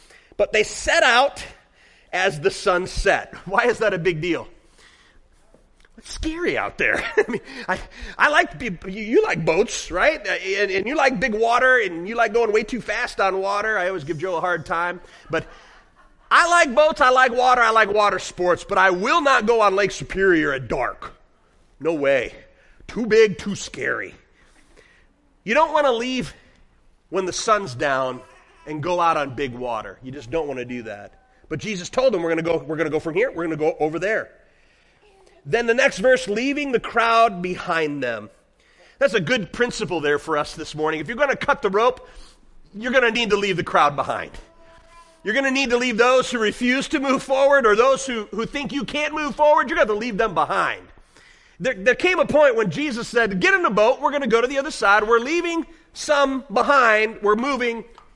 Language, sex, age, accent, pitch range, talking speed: English, male, 30-49, American, 180-270 Hz, 215 wpm